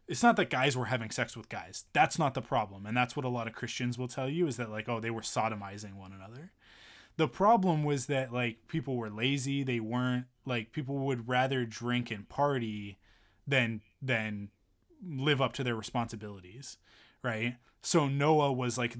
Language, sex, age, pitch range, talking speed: English, male, 20-39, 110-135 Hz, 195 wpm